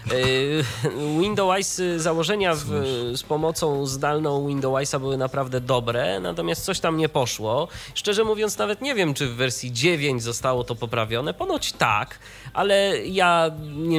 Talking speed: 140 wpm